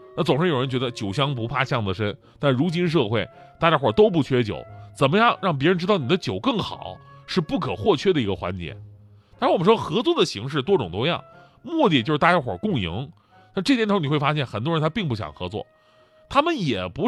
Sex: male